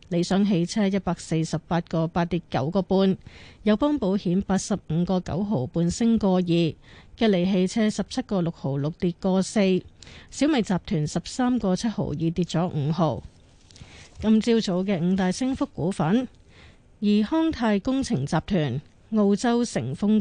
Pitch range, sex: 170-220 Hz, female